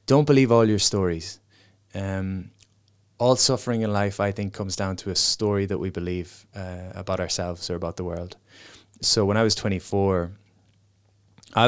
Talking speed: 170 wpm